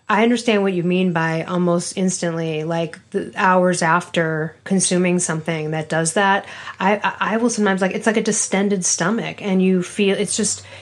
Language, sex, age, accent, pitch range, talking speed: English, female, 30-49, American, 175-225 Hz, 175 wpm